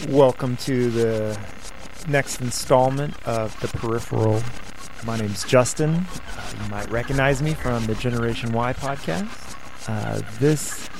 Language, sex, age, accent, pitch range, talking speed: English, male, 30-49, American, 115-140 Hz, 120 wpm